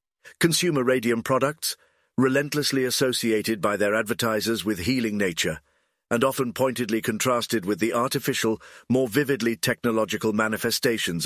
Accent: British